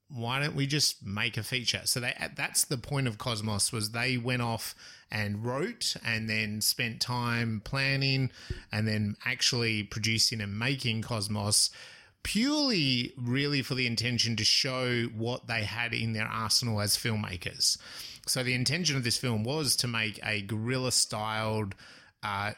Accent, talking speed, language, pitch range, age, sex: Australian, 155 wpm, English, 110-130 Hz, 30-49, male